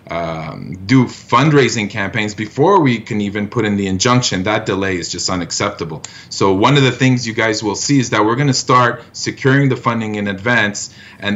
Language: English